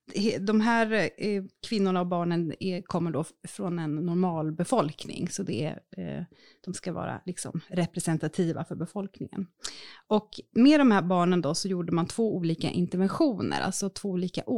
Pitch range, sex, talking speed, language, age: 165-200 Hz, female, 150 wpm, Swedish, 30-49